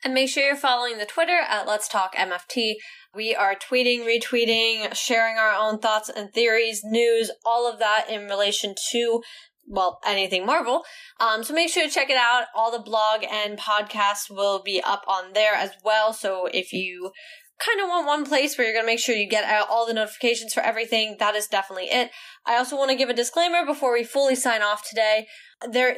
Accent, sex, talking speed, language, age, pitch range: American, female, 210 wpm, English, 10-29, 210-255 Hz